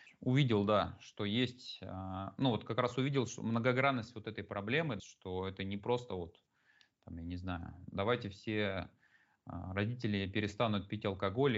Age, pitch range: 20-39, 100-125 Hz